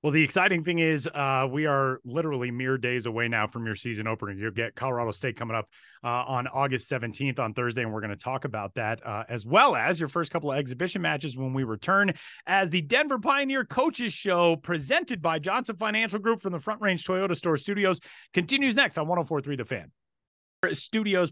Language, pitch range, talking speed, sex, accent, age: English, 130-165 Hz, 210 wpm, male, American, 30-49